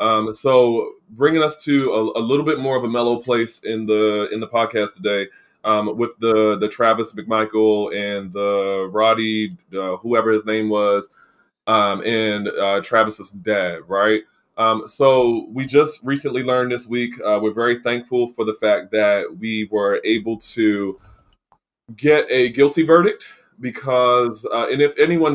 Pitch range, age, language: 110-130 Hz, 20-39, English